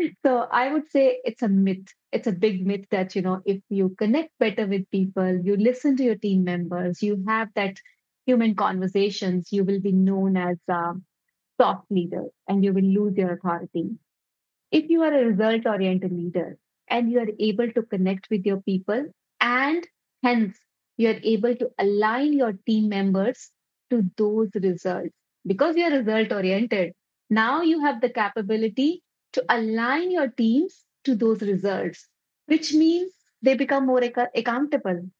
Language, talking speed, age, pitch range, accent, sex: English, 165 wpm, 30-49, 195-255 Hz, Indian, female